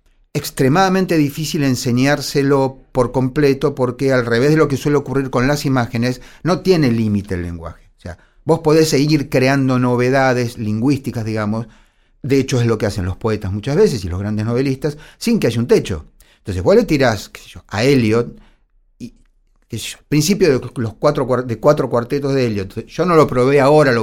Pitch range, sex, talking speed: 115-155 Hz, male, 190 wpm